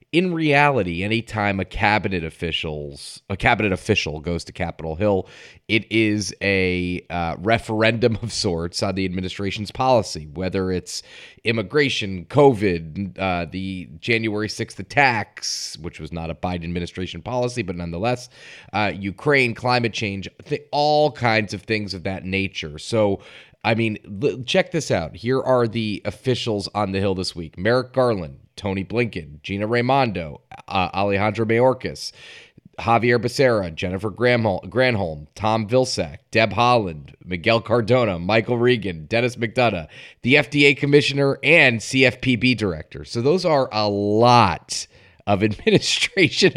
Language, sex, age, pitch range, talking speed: English, male, 30-49, 95-125 Hz, 135 wpm